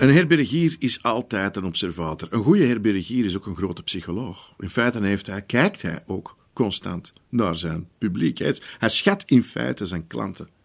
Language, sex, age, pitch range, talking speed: Dutch, male, 50-69, 90-135 Hz, 175 wpm